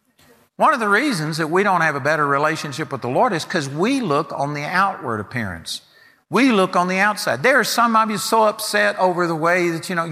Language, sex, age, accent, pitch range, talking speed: English, male, 50-69, American, 150-220 Hz, 235 wpm